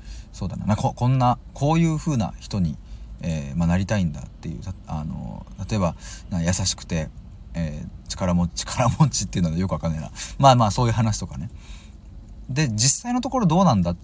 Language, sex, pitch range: Japanese, male, 90-135 Hz